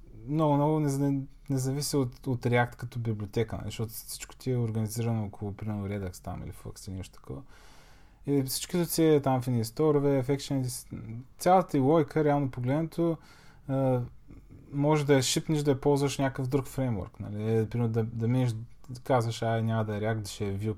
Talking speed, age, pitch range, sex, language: 195 wpm, 20-39, 115-150 Hz, male, Bulgarian